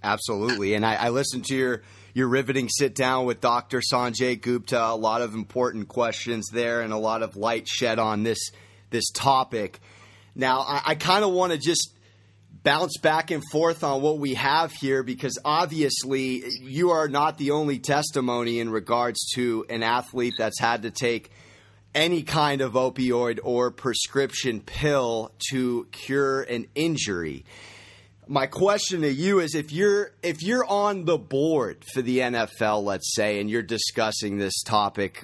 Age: 30-49